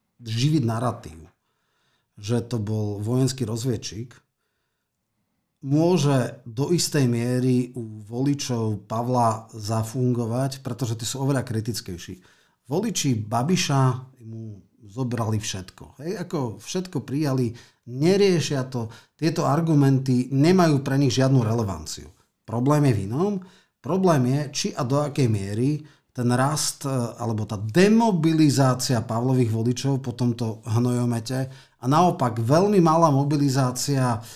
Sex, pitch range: male, 115-145 Hz